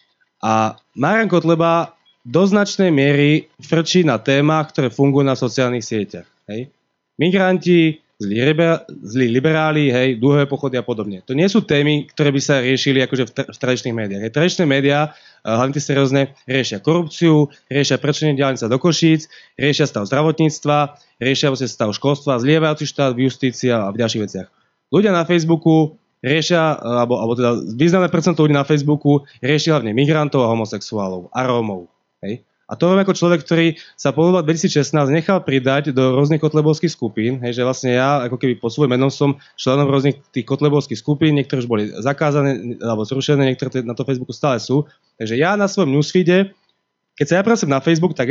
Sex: male